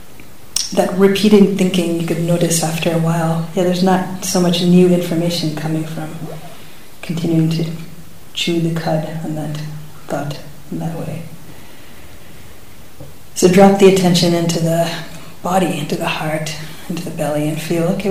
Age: 30-49